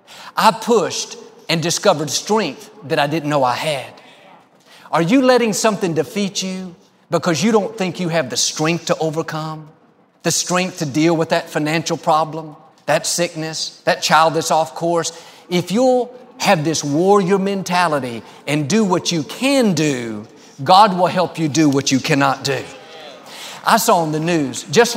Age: 40-59